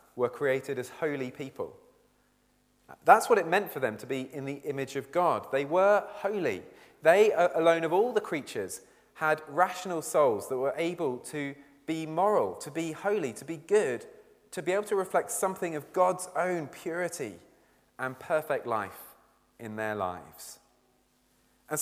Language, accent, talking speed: English, British, 160 wpm